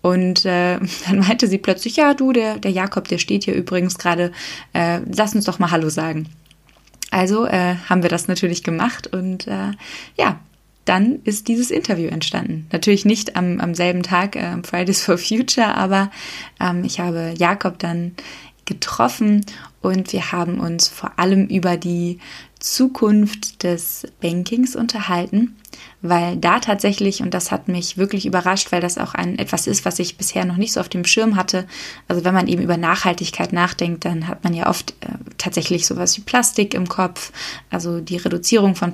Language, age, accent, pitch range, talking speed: German, 20-39, German, 175-210 Hz, 175 wpm